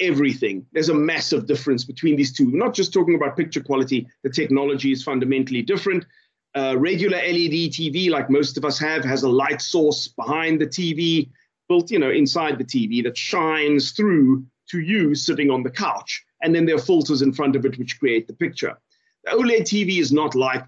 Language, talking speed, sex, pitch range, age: English, 205 wpm, male, 135-195 Hz, 30-49